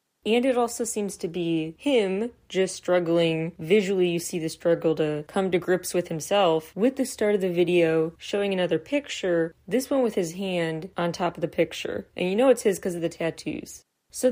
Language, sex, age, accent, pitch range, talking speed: English, female, 30-49, American, 165-205 Hz, 205 wpm